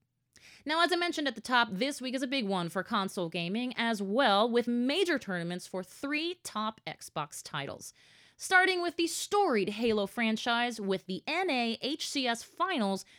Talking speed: 170 wpm